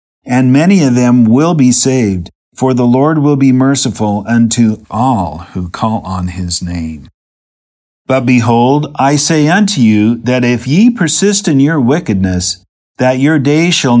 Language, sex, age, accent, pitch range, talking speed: English, male, 50-69, American, 110-150 Hz, 160 wpm